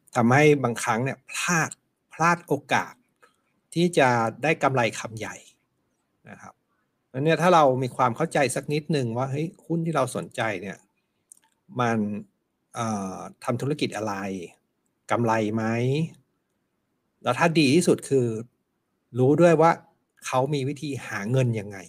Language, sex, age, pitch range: Thai, male, 60-79, 115-150 Hz